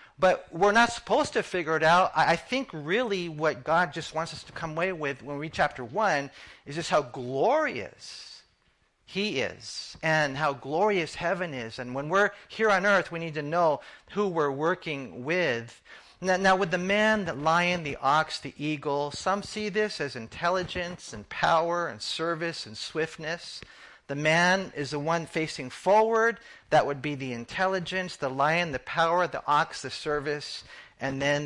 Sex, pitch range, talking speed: male, 140-190 Hz, 180 wpm